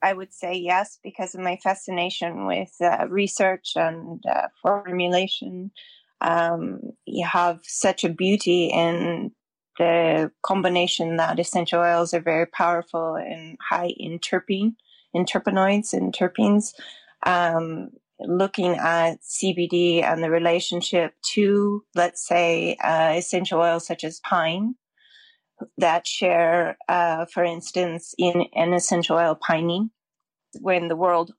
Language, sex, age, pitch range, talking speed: English, female, 20-39, 170-200 Hz, 130 wpm